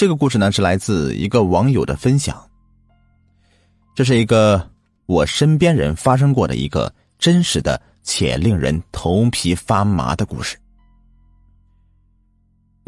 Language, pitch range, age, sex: Chinese, 90-130 Hz, 30-49, male